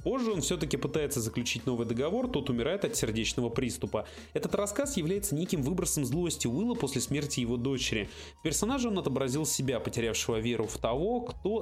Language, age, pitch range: Russian, 30-49, 125-175 Hz